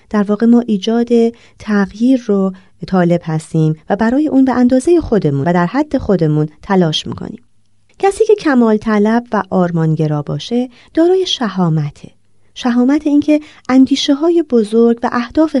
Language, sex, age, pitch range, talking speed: Persian, female, 30-49, 155-250 Hz, 140 wpm